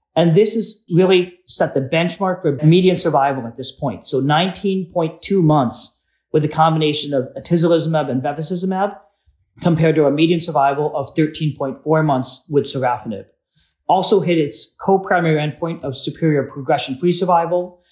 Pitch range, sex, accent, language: 145-175 Hz, male, American, English